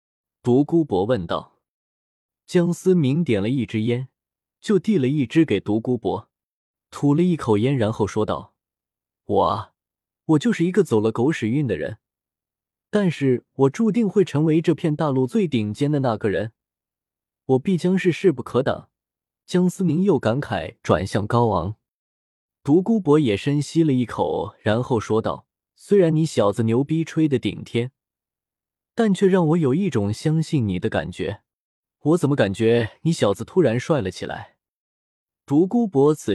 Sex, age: male, 20-39